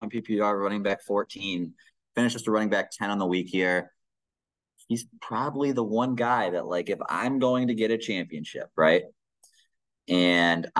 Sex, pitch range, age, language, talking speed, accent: male, 105-135 Hz, 20-39, English, 165 wpm, American